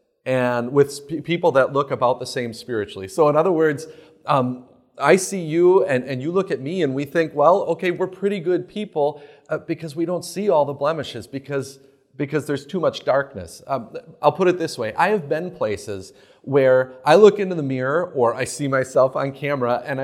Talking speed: 205 wpm